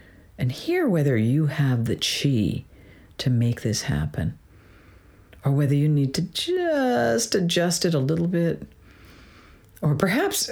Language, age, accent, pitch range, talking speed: English, 50-69, American, 105-160 Hz, 135 wpm